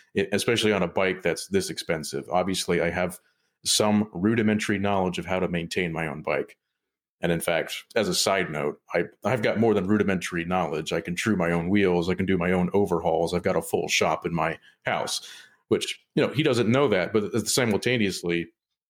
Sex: male